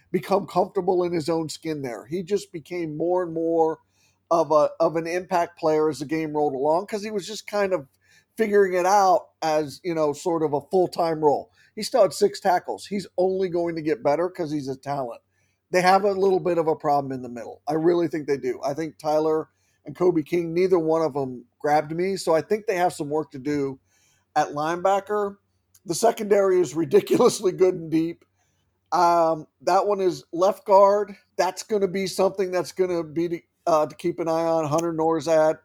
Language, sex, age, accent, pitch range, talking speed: English, male, 40-59, American, 150-190 Hz, 210 wpm